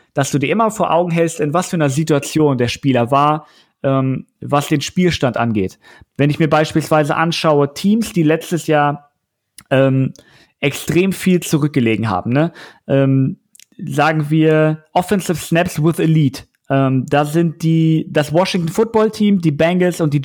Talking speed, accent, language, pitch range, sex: 155 wpm, German, German, 140-175 Hz, male